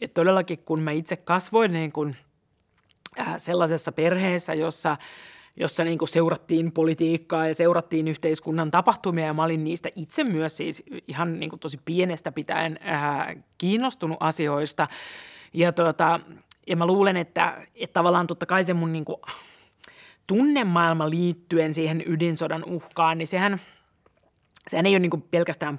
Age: 30-49